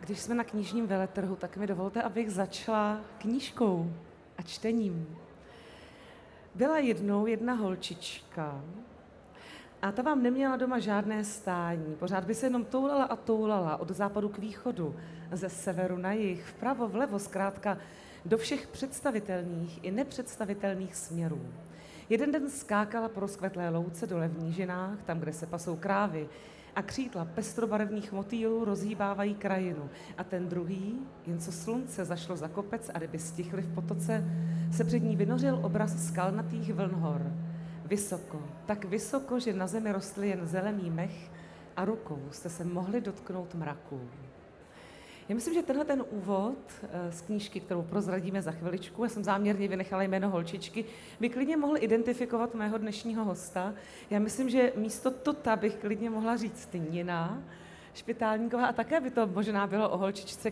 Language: Czech